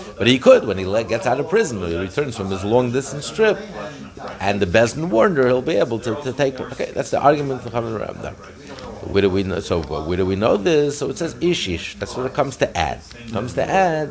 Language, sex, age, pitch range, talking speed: English, male, 50-69, 95-120 Hz, 235 wpm